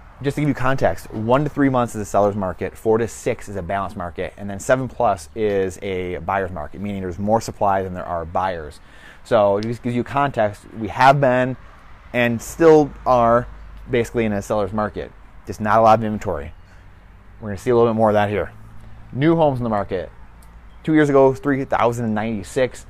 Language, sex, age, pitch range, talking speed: English, male, 20-39, 100-120 Hz, 205 wpm